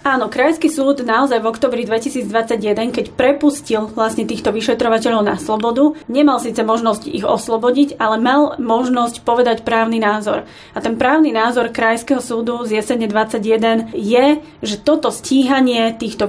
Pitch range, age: 220-260 Hz, 30-49